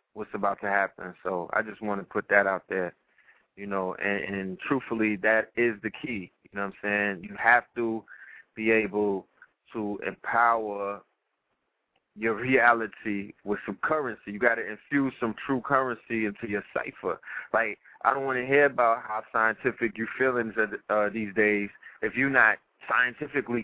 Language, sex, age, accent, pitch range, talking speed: English, male, 20-39, American, 110-145 Hz, 170 wpm